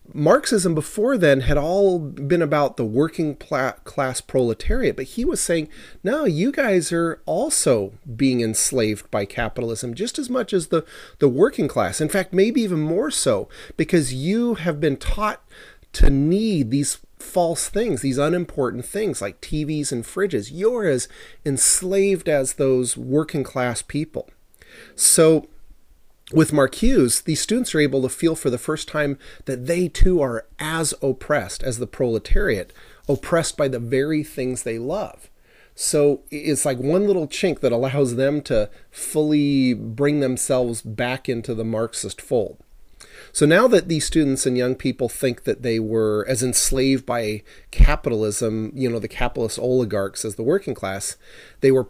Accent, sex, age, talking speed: American, male, 30-49, 160 wpm